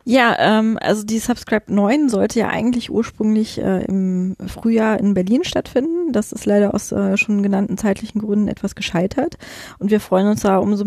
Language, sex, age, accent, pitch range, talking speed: German, female, 20-39, German, 190-215 Hz, 180 wpm